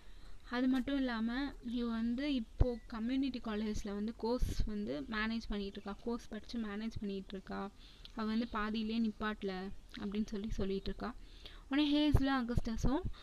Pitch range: 210-255 Hz